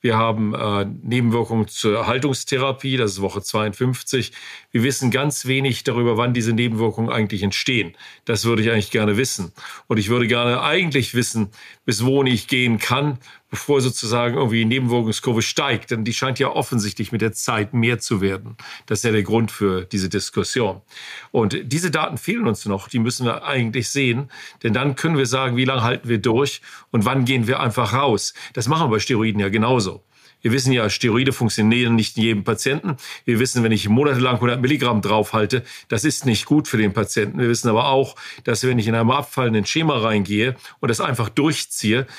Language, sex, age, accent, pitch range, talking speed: German, male, 40-59, German, 110-130 Hz, 190 wpm